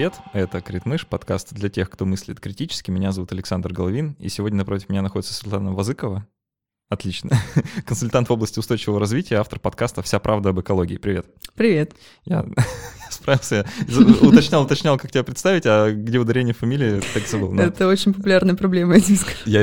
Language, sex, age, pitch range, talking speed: Russian, male, 20-39, 95-125 Hz, 160 wpm